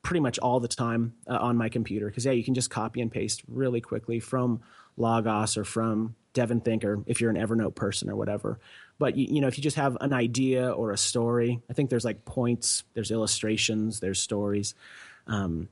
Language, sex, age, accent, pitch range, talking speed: English, male, 30-49, American, 110-125 Hz, 205 wpm